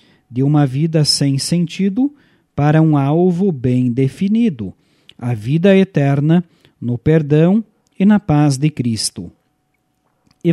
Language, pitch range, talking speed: Portuguese, 140-170 Hz, 120 wpm